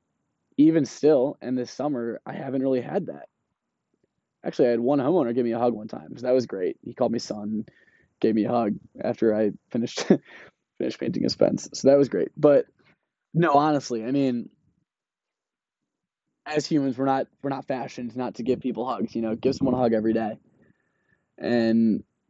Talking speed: 190 wpm